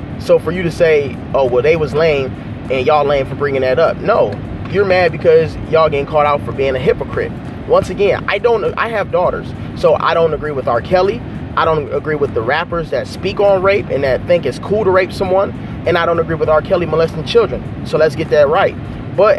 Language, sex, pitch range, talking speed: English, male, 150-195 Hz, 235 wpm